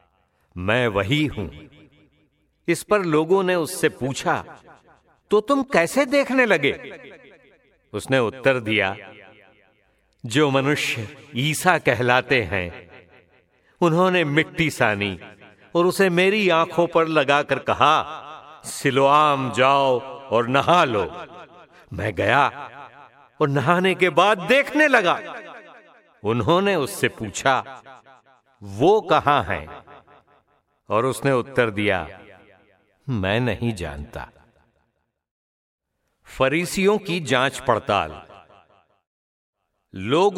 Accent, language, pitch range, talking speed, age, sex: Indian, English, 105-170 Hz, 95 wpm, 60-79, male